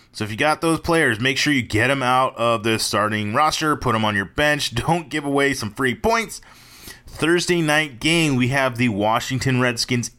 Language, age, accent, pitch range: English, 30-49, American, 115-145 Hz